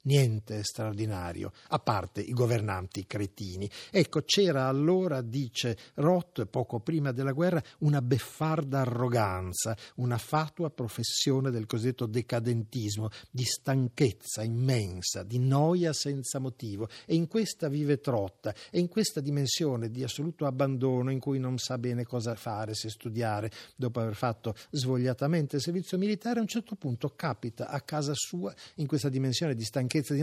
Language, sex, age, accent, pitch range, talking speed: Italian, male, 50-69, native, 120-160 Hz, 150 wpm